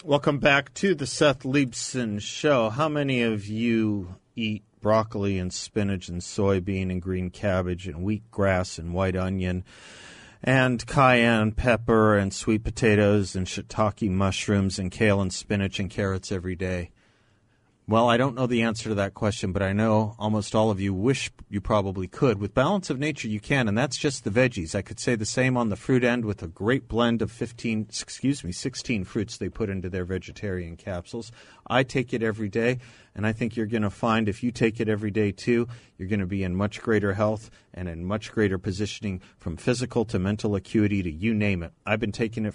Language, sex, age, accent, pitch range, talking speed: English, male, 40-59, American, 95-115 Hz, 205 wpm